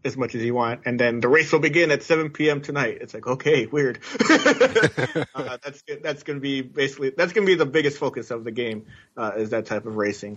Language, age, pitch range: English, 30-49, 120-145 Hz